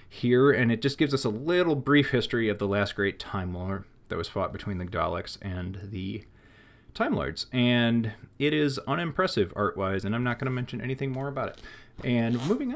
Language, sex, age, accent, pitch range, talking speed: English, male, 30-49, American, 95-125 Hz, 205 wpm